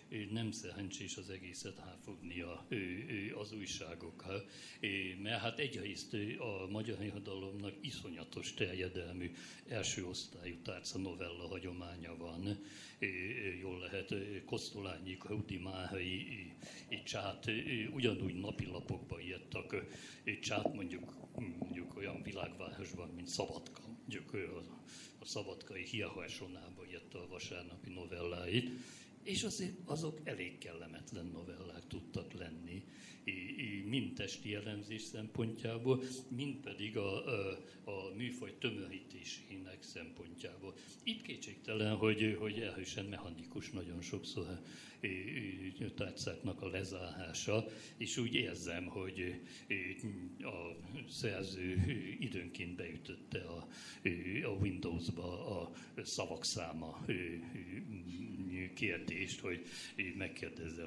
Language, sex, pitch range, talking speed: Hungarian, male, 90-110 Hz, 90 wpm